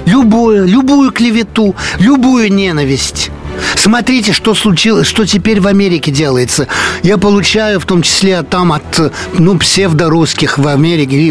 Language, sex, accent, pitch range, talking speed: Russian, male, native, 155-210 Hz, 125 wpm